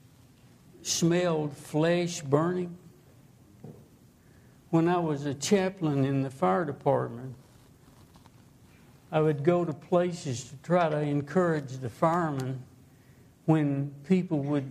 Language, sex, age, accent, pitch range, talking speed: English, male, 60-79, American, 130-170 Hz, 105 wpm